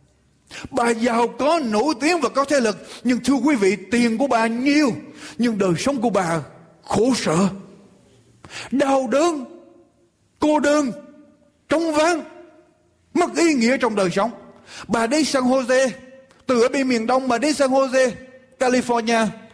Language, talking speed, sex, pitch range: Vietnamese, 155 wpm, male, 225-300 Hz